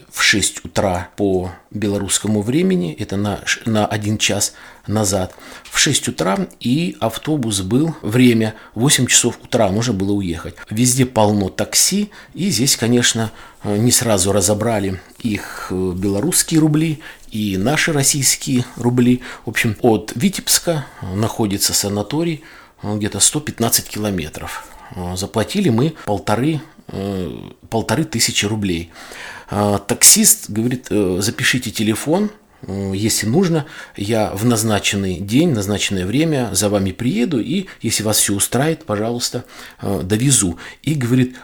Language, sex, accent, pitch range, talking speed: Russian, male, native, 100-130 Hz, 115 wpm